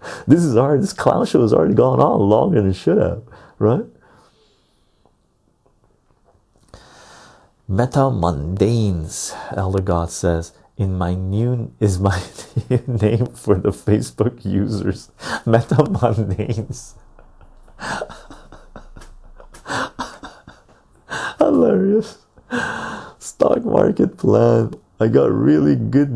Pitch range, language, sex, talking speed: 95-115 Hz, English, male, 95 wpm